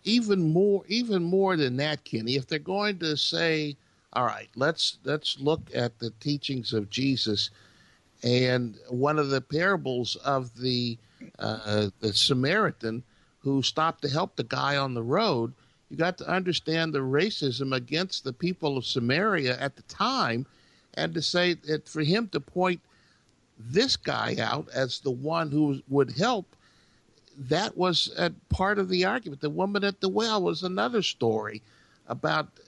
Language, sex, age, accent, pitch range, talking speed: English, male, 50-69, American, 120-190 Hz, 160 wpm